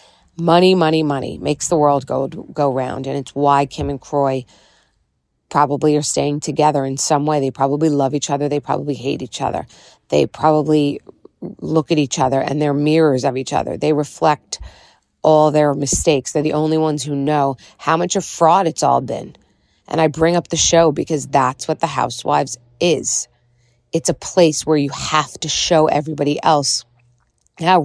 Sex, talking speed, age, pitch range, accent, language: female, 185 wpm, 30-49, 140-160 Hz, American, English